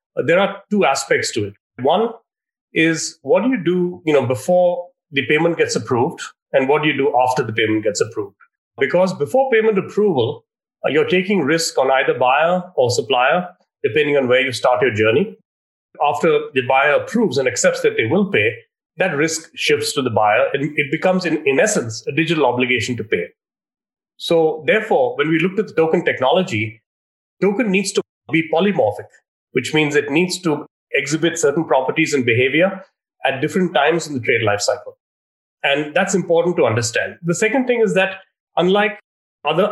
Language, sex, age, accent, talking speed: English, male, 40-59, Indian, 180 wpm